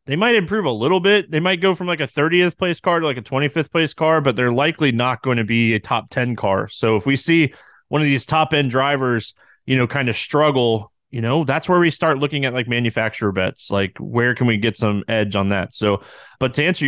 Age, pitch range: 20-39, 115-155 Hz